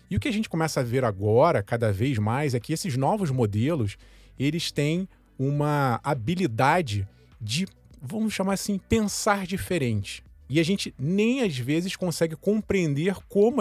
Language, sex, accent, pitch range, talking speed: Portuguese, male, Brazilian, 120-180 Hz, 160 wpm